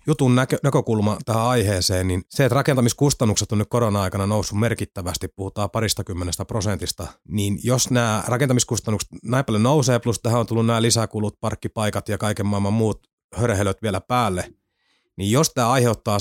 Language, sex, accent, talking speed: Finnish, male, native, 155 wpm